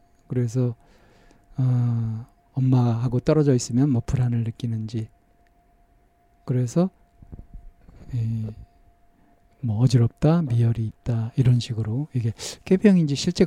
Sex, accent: male, native